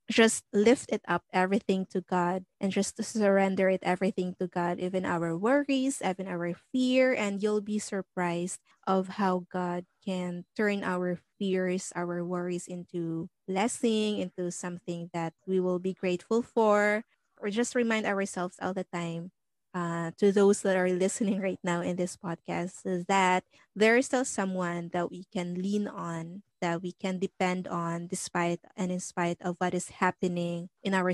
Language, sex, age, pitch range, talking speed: English, female, 20-39, 175-205 Hz, 165 wpm